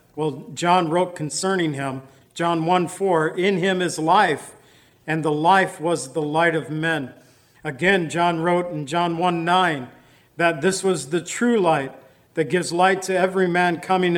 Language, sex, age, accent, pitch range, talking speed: English, male, 50-69, American, 155-185 Hz, 170 wpm